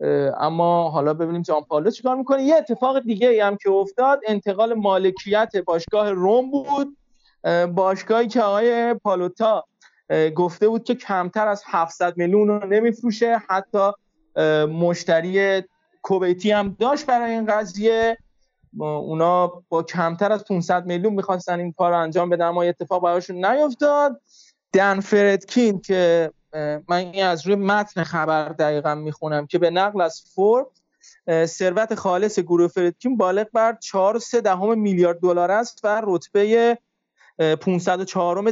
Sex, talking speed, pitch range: male, 130 wpm, 175-225 Hz